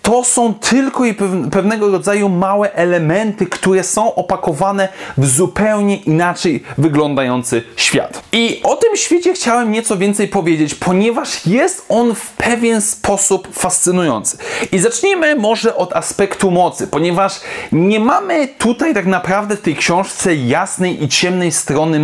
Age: 30-49